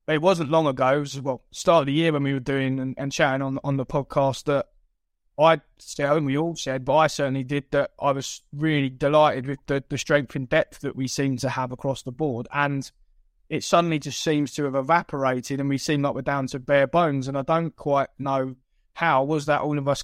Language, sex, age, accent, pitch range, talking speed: English, male, 20-39, British, 135-150 Hz, 240 wpm